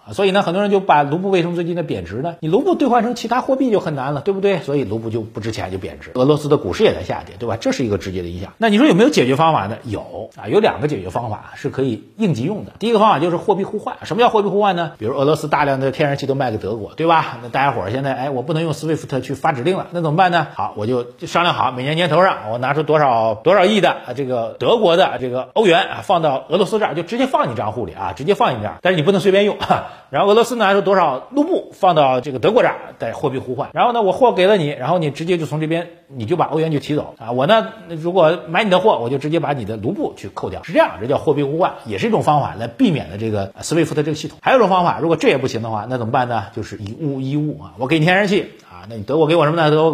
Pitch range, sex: 125-180 Hz, male